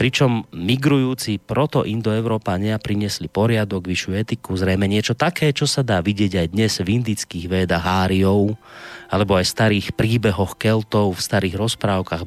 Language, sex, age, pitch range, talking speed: Slovak, male, 30-49, 95-125 Hz, 135 wpm